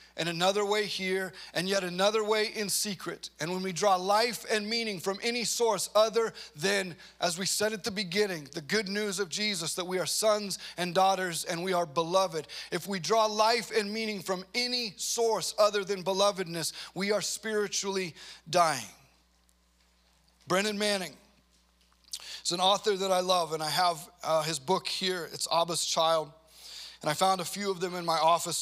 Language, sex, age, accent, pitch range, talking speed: English, male, 30-49, American, 155-195 Hz, 180 wpm